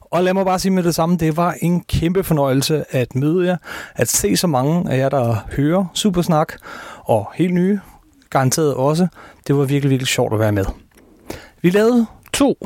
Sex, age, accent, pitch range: male, 30-49, native, 125-175 Hz